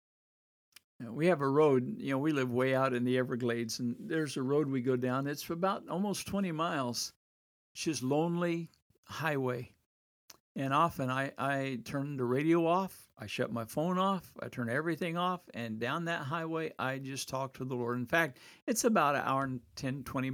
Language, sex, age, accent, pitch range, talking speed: English, male, 60-79, American, 120-155 Hz, 190 wpm